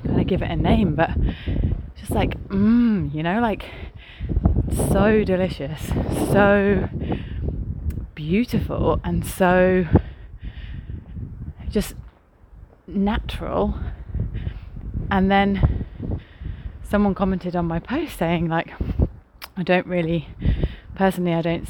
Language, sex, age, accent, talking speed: English, female, 30-49, British, 95 wpm